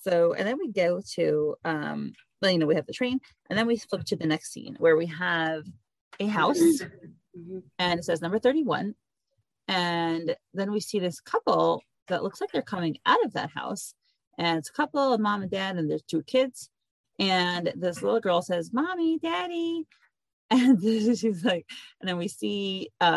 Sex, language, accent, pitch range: female, English, American, 170-245 Hz